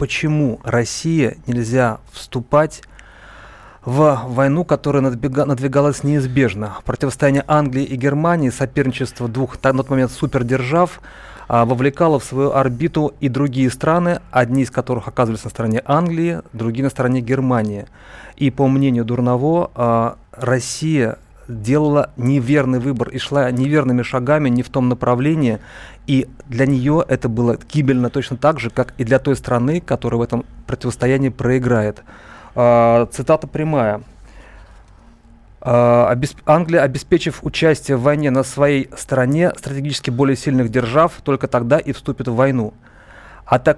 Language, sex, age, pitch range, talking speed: Russian, male, 30-49, 120-145 Hz, 130 wpm